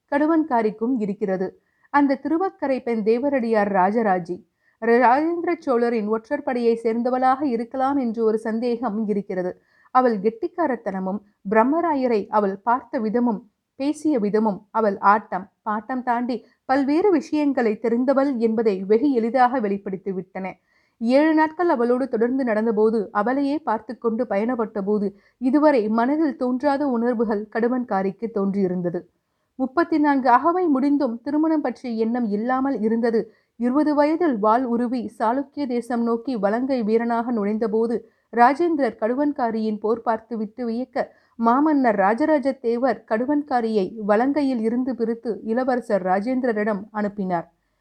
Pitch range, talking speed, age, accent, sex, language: 215-270 Hz, 105 wpm, 60-79, native, female, Tamil